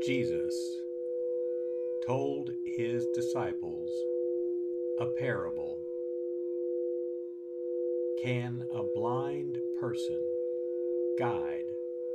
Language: English